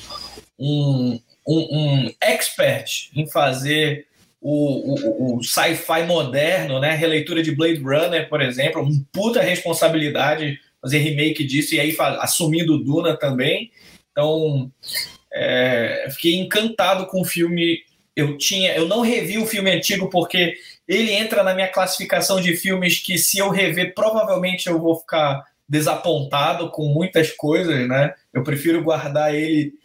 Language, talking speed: Portuguese, 140 wpm